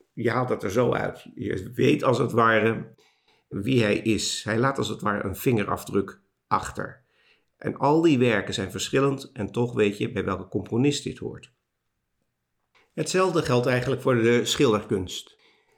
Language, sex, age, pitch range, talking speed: Dutch, male, 50-69, 100-130 Hz, 165 wpm